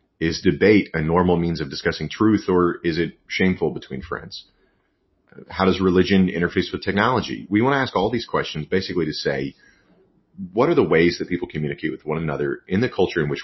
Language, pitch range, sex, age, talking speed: English, 80-95 Hz, male, 30-49, 200 wpm